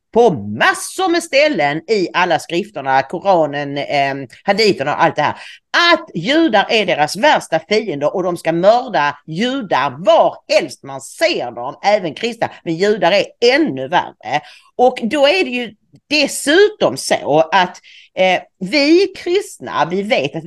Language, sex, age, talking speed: English, female, 40-59, 140 wpm